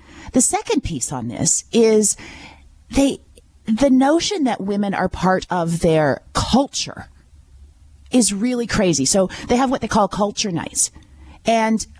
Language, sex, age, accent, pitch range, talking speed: English, female, 40-59, American, 170-250 Hz, 140 wpm